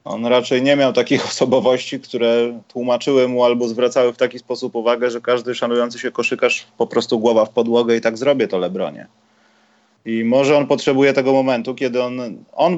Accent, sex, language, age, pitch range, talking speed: native, male, Polish, 30-49, 105-125 Hz, 185 wpm